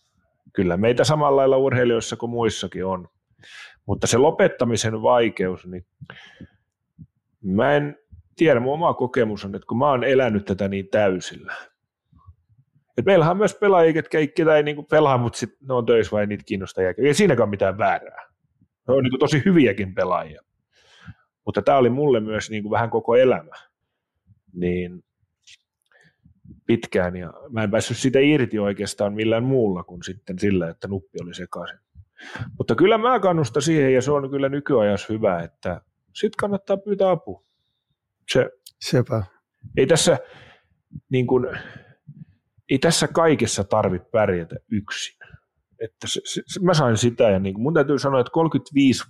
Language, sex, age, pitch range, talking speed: Finnish, male, 30-49, 100-140 Hz, 145 wpm